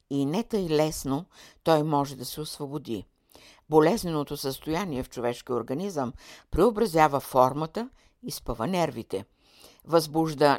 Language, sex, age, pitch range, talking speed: Bulgarian, female, 60-79, 130-185 Hz, 115 wpm